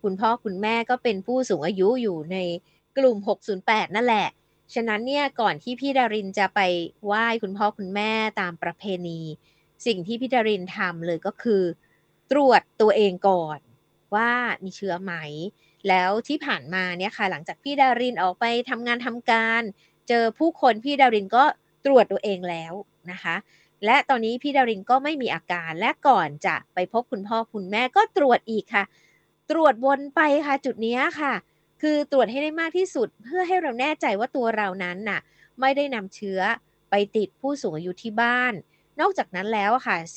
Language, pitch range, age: Thai, 190-255 Hz, 20-39